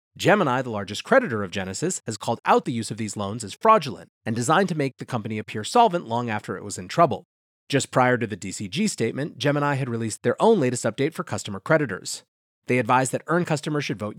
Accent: American